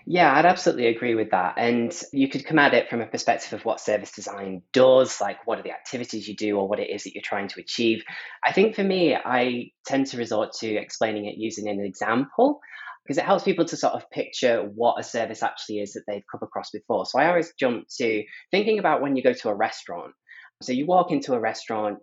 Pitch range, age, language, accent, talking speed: 115-160 Hz, 20-39, English, British, 235 wpm